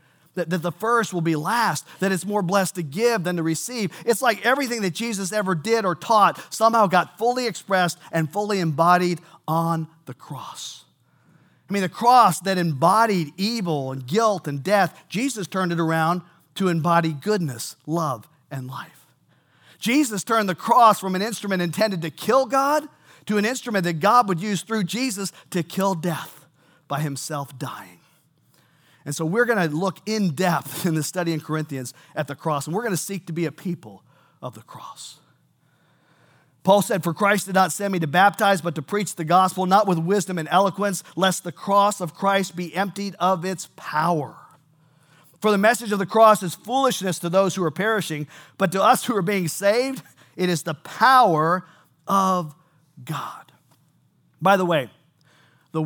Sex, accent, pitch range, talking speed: male, American, 160-205 Hz, 180 wpm